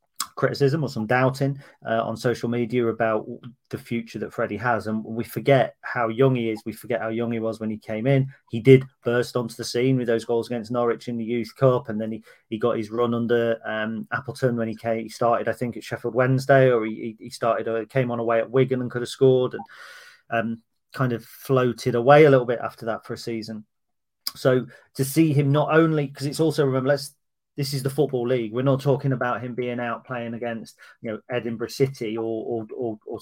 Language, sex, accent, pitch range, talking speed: English, male, British, 115-135 Hz, 230 wpm